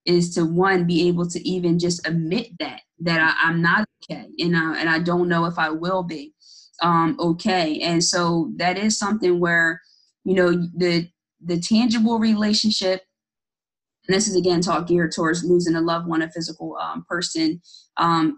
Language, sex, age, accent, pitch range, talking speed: English, female, 20-39, American, 170-185 Hz, 180 wpm